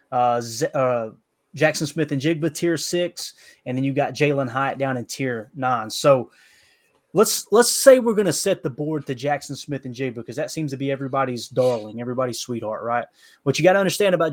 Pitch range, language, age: 130-155 Hz, English, 20-39